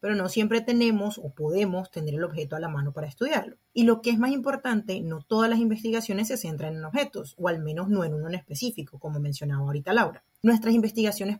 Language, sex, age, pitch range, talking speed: Spanish, female, 30-49, 160-215 Hz, 220 wpm